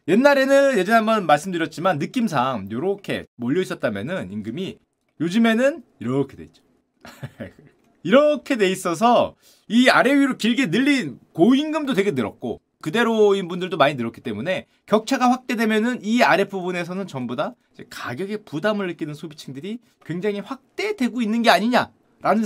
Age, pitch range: 30-49, 170-245 Hz